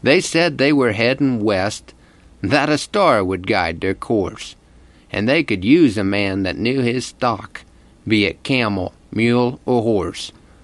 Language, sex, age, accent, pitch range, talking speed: English, male, 50-69, American, 95-135 Hz, 165 wpm